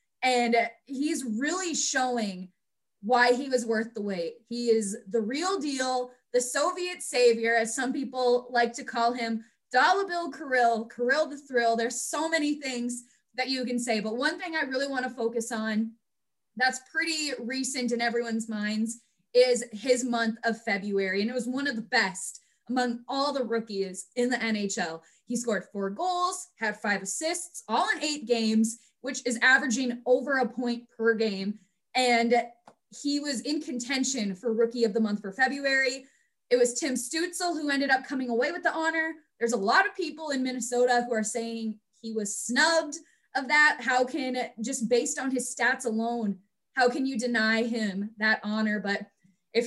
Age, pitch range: 20-39, 225-275 Hz